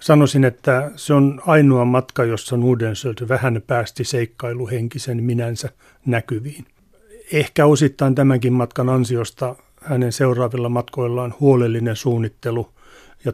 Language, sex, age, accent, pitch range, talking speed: Finnish, male, 40-59, native, 115-135 Hz, 110 wpm